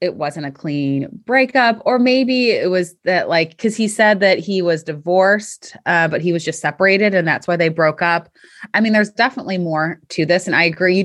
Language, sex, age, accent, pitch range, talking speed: English, female, 20-39, American, 165-225 Hz, 225 wpm